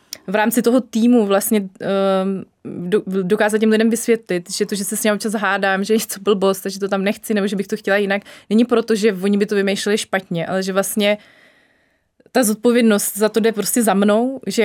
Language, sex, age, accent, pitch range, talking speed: Czech, female, 20-39, native, 195-220 Hz, 215 wpm